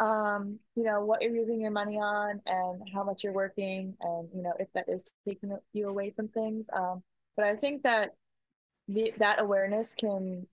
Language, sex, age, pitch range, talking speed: English, female, 20-39, 180-205 Hz, 190 wpm